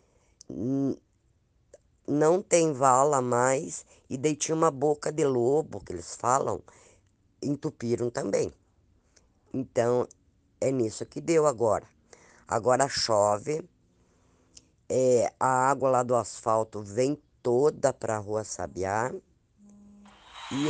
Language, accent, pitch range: Portuguese, Brazilian, 110-145 Hz